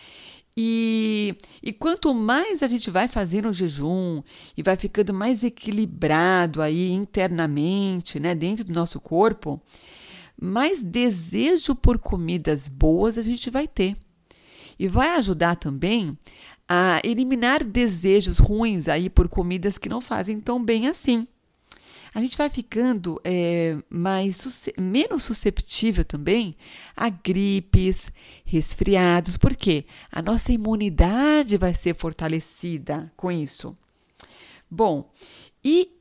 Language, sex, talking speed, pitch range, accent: Portuguese, female, 120 wpm, 170-230 Hz, Brazilian